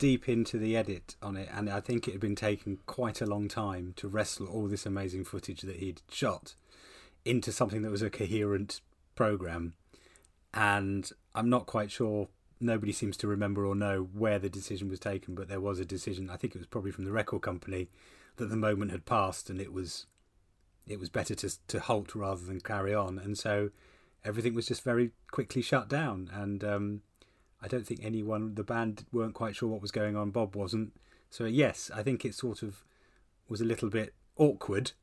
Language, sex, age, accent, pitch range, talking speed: English, male, 30-49, British, 100-120 Hz, 205 wpm